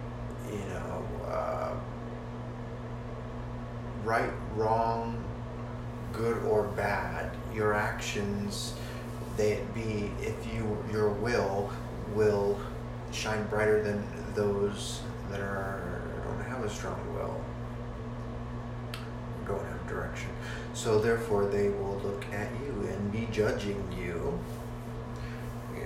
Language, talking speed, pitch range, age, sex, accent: English, 100 wpm, 105-120 Hz, 30-49, male, American